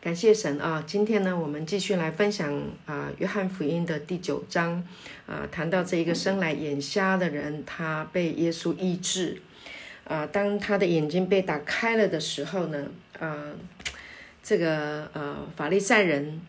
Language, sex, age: Chinese, female, 50-69